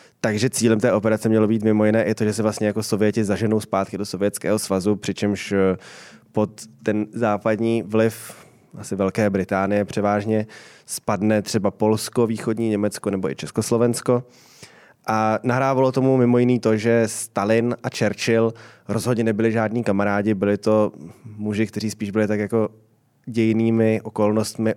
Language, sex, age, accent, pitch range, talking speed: Czech, male, 20-39, native, 105-115 Hz, 150 wpm